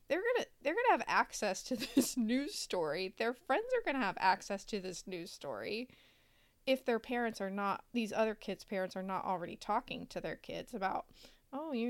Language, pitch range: English, 205-290 Hz